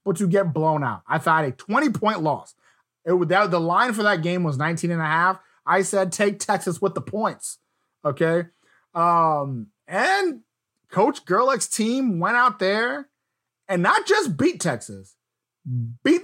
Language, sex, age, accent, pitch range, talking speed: English, male, 20-39, American, 140-200 Hz, 155 wpm